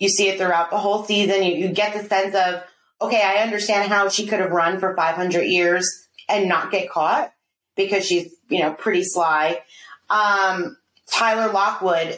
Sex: female